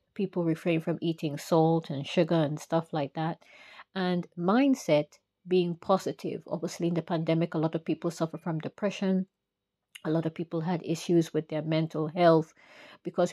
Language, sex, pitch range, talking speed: English, female, 155-180 Hz, 165 wpm